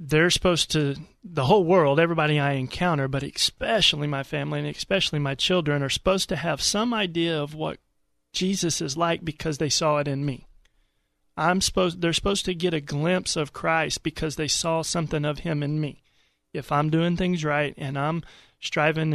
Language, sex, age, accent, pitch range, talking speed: English, male, 30-49, American, 145-175 Hz, 190 wpm